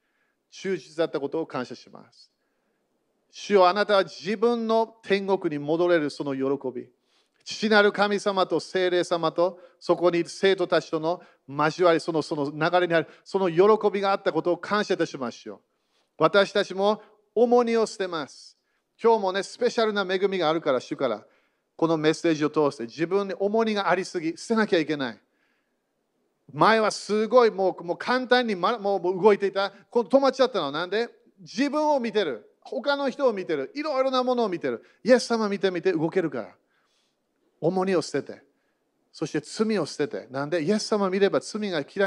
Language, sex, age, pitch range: Japanese, male, 40-59, 165-210 Hz